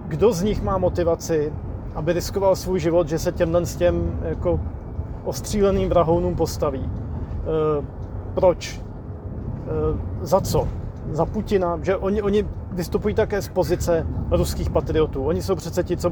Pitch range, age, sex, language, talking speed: 125-175 Hz, 30-49, male, Slovak, 145 wpm